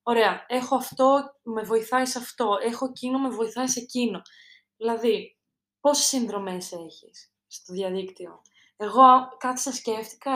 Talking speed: 135 wpm